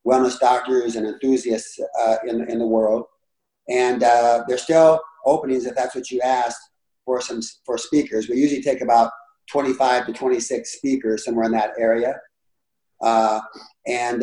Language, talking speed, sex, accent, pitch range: English, 165 wpm, male, American, 115-130 Hz